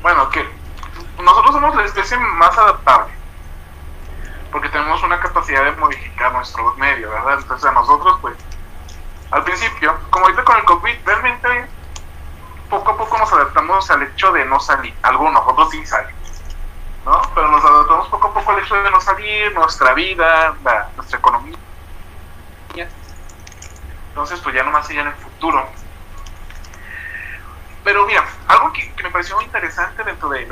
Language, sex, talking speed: Spanish, male, 145 wpm